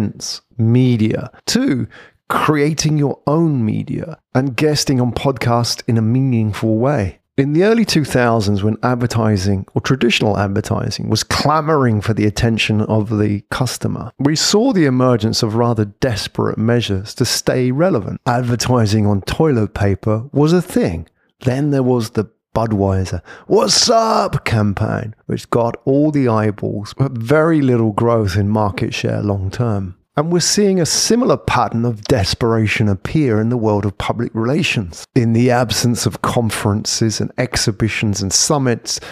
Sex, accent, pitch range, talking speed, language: male, British, 110-140 Hz, 145 wpm, English